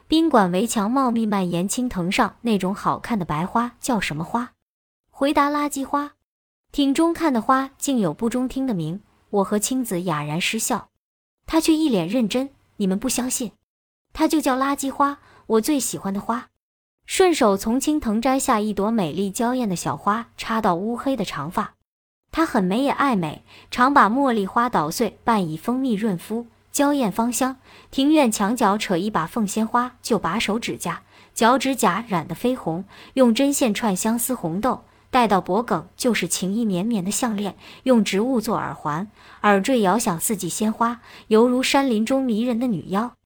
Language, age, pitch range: Chinese, 20-39, 195-260 Hz